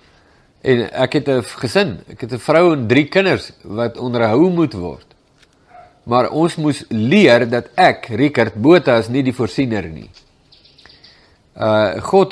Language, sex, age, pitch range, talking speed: English, male, 50-69, 115-150 Hz, 150 wpm